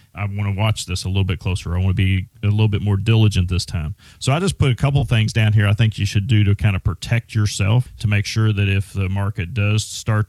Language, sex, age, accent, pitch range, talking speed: English, male, 40-59, American, 100-115 Hz, 285 wpm